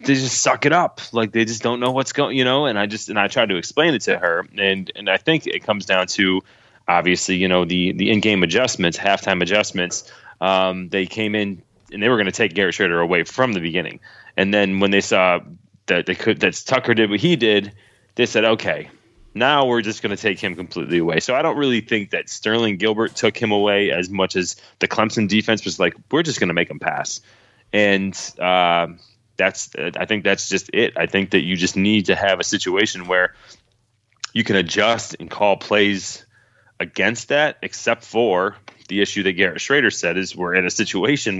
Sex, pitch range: male, 95-115 Hz